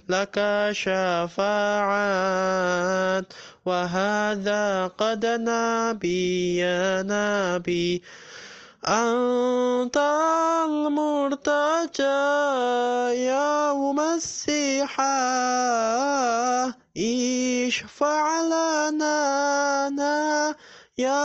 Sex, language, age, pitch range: male, Indonesian, 20-39, 225-285 Hz